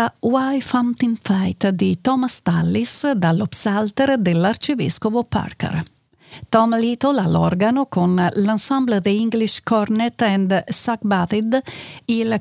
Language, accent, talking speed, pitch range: Italian, native, 95 wpm, 180-240 Hz